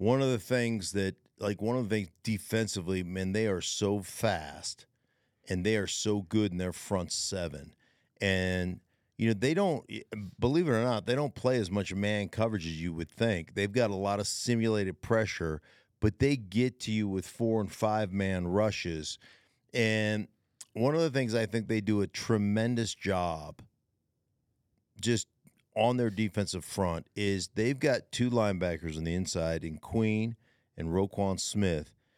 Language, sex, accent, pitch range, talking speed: English, male, American, 95-115 Hz, 170 wpm